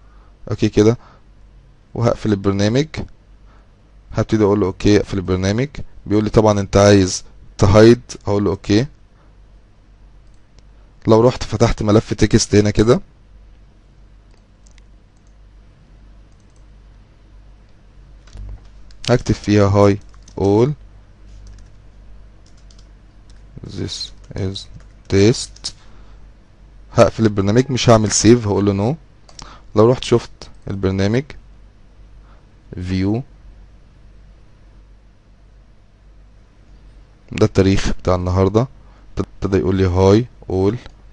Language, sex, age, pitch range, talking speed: Arabic, male, 20-39, 100-110 Hz, 80 wpm